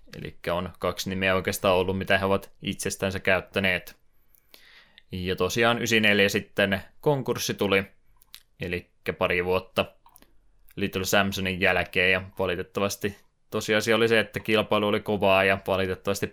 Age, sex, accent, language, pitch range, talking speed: 20-39, male, native, Finnish, 95-105 Hz, 125 wpm